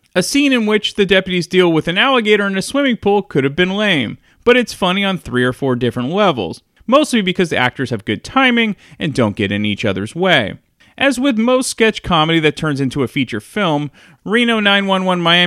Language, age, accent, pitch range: English, 30-49, American, 120-200 Hz